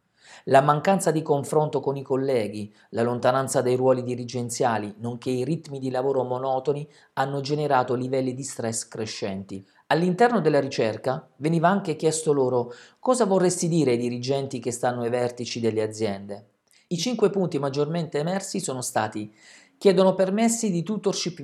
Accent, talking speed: native, 150 wpm